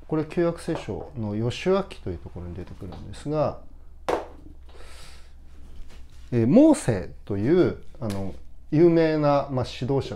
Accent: native